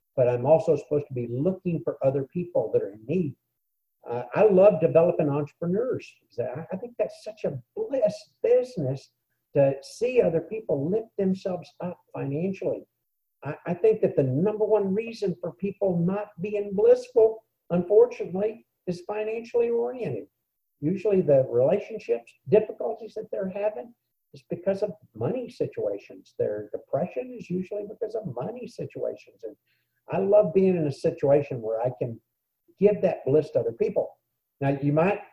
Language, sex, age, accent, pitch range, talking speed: English, male, 60-79, American, 155-210 Hz, 155 wpm